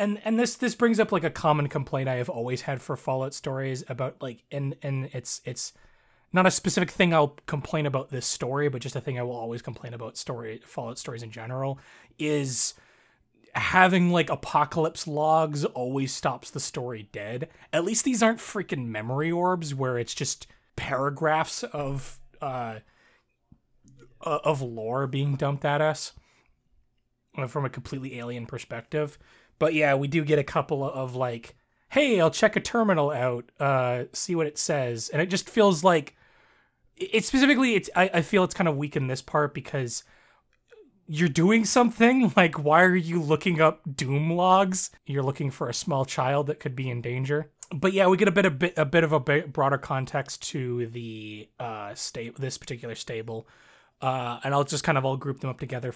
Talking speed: 185 wpm